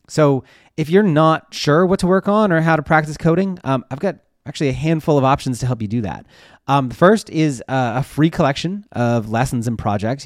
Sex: male